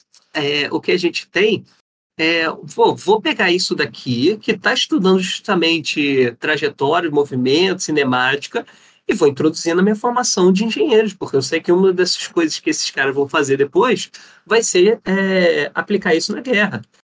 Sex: male